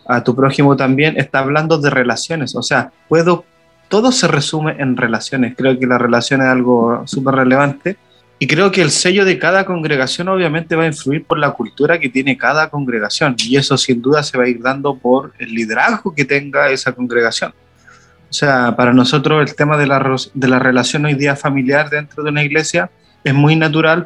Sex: male